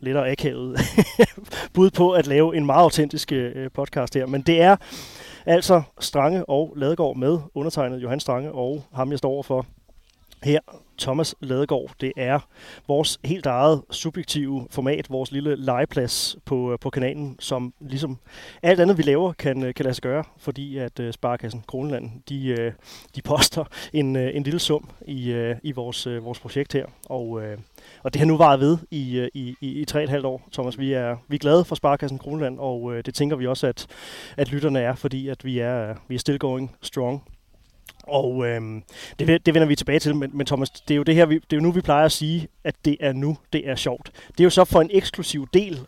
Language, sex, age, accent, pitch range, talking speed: Danish, male, 30-49, native, 130-155 Hz, 210 wpm